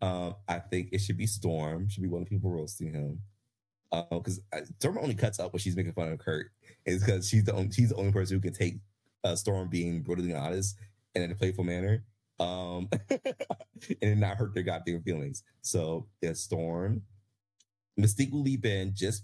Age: 30-49